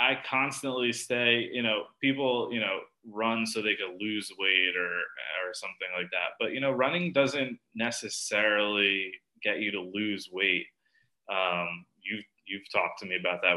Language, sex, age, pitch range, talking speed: English, male, 20-39, 105-125 Hz, 170 wpm